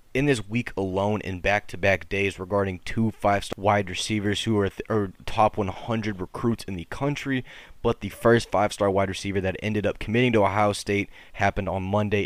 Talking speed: 180 wpm